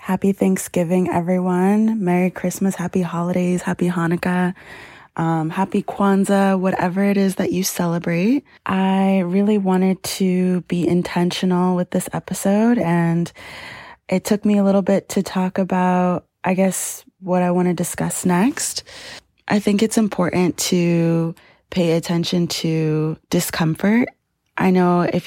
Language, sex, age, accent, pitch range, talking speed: English, female, 20-39, American, 165-190 Hz, 135 wpm